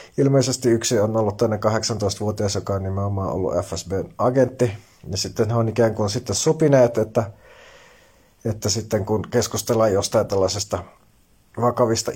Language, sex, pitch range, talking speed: Finnish, male, 105-120 Hz, 140 wpm